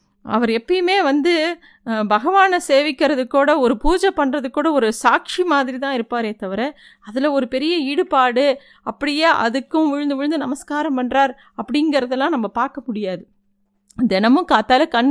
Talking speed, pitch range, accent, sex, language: 130 wpm, 220-280 Hz, native, female, Tamil